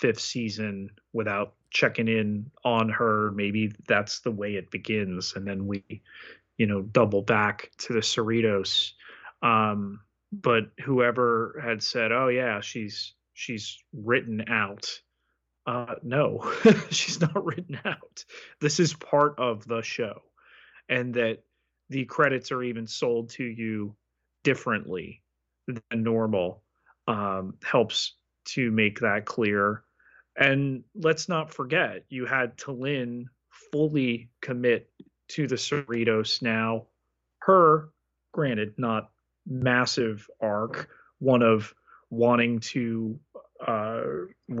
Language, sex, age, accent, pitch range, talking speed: English, male, 30-49, American, 110-130 Hz, 115 wpm